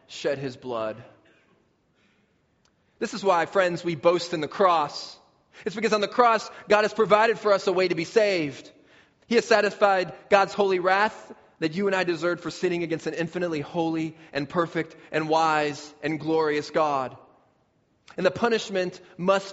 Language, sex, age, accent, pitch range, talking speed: English, male, 20-39, American, 145-190 Hz, 170 wpm